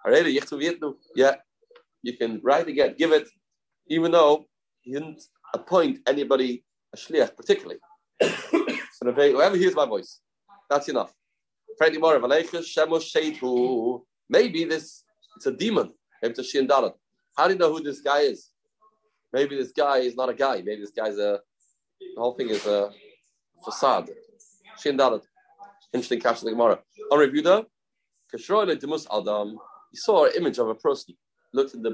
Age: 30-49